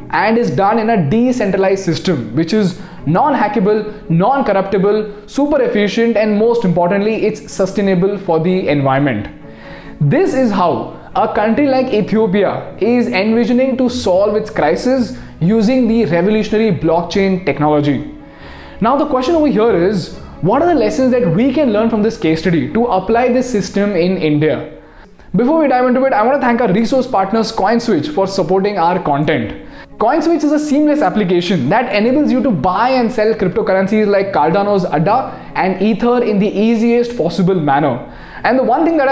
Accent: native